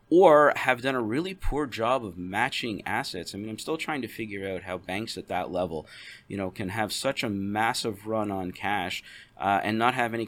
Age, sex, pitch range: 30-49, male, 100-115 Hz